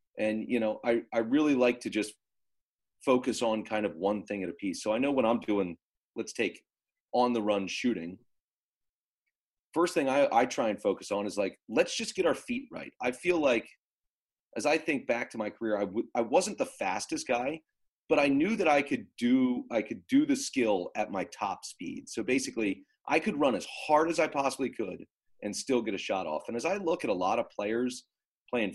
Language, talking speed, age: English, 215 wpm, 30-49